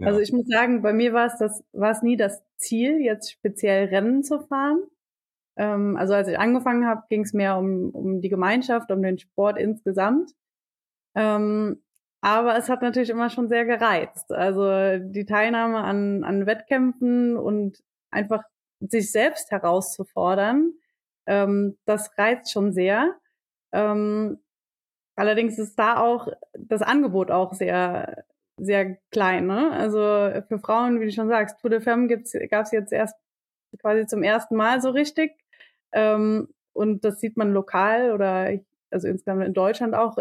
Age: 20-39